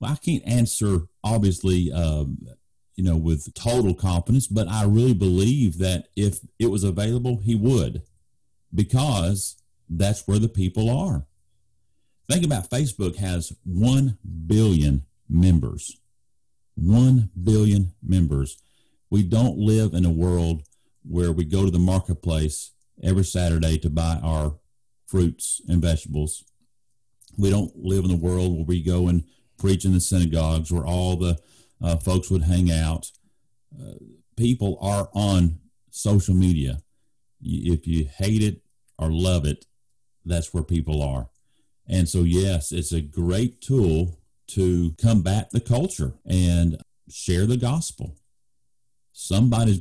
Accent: American